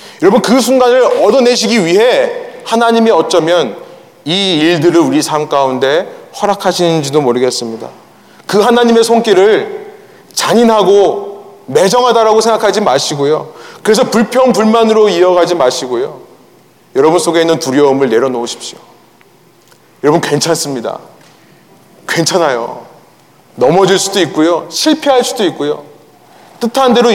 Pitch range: 165-235 Hz